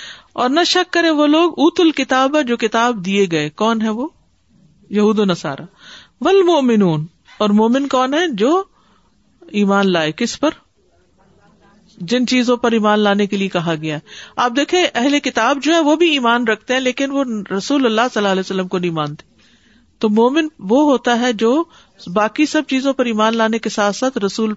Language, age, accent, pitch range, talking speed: English, 50-69, Indian, 190-265 Hz, 160 wpm